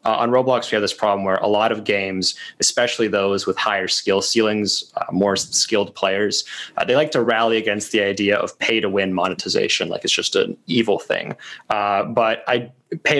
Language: English